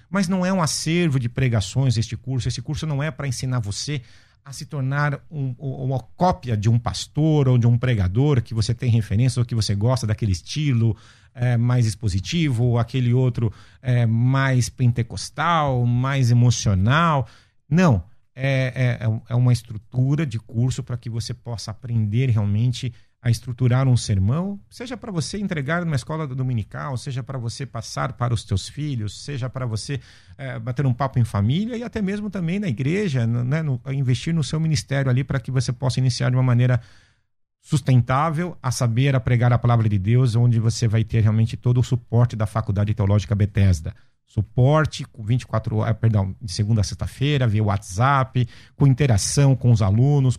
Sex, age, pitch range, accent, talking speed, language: male, 50-69, 115-135 Hz, Brazilian, 175 wpm, Portuguese